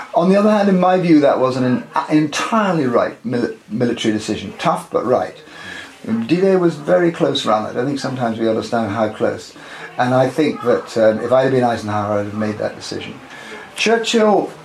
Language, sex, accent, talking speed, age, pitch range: English, male, British, 200 wpm, 50-69, 115-160 Hz